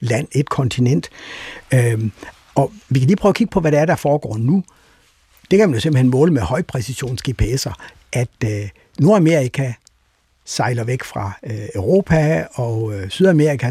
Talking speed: 160 wpm